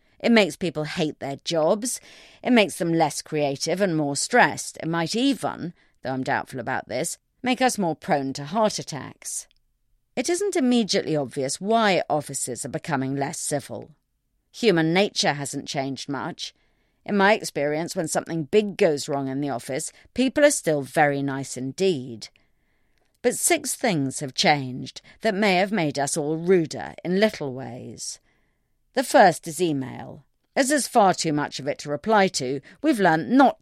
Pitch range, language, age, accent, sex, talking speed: 140-200 Hz, English, 40-59, British, female, 165 wpm